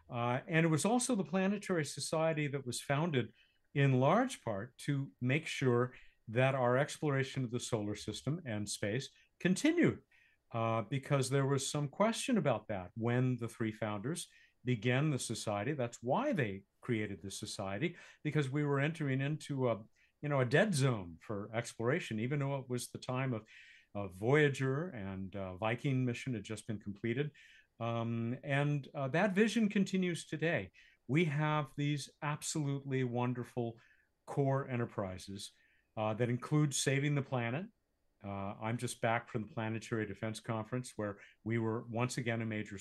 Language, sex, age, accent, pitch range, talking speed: English, male, 50-69, American, 115-150 Hz, 160 wpm